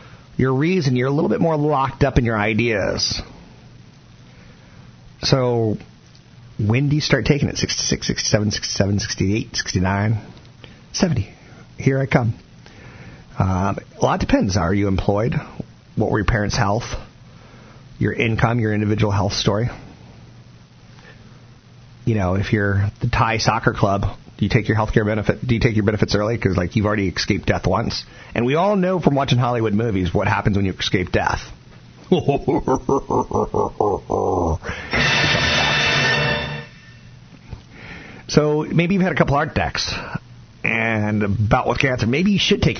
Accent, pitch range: American, 105-130 Hz